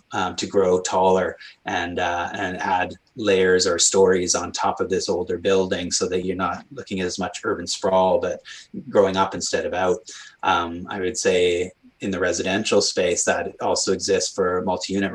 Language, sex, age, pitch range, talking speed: English, male, 30-49, 90-100 Hz, 180 wpm